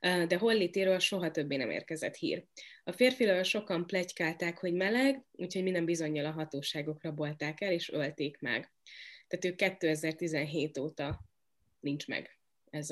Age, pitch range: 20-39, 160-195 Hz